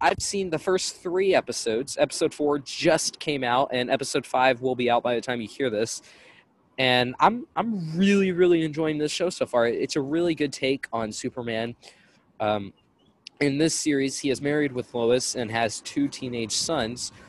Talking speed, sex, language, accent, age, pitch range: 185 wpm, male, English, American, 20-39, 115-150 Hz